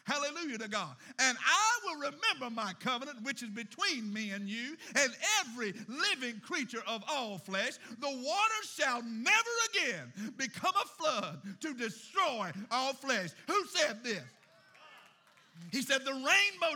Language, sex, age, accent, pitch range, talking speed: English, male, 60-79, American, 240-350 Hz, 145 wpm